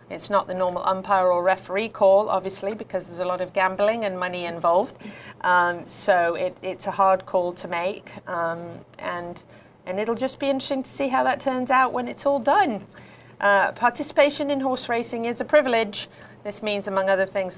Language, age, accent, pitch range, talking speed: English, 40-59, British, 175-220 Hz, 195 wpm